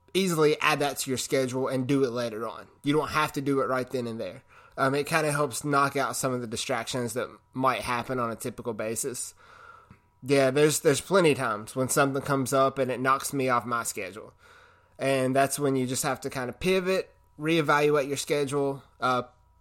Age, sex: 20-39, male